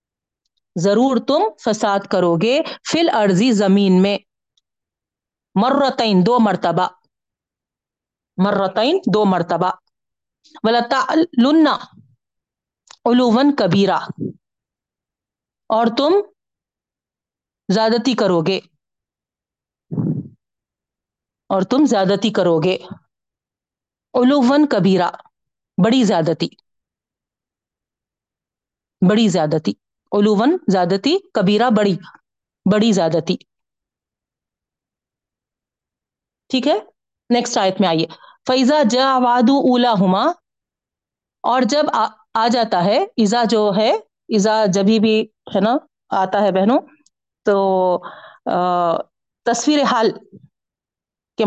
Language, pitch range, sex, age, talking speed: Urdu, 190-255 Hz, female, 40-59, 75 wpm